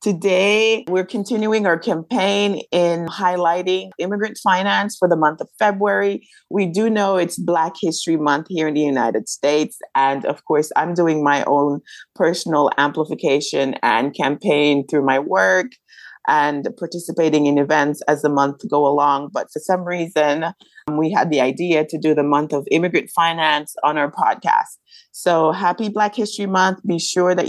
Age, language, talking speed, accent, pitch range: 30-49, English, 165 wpm, American, 145-190 Hz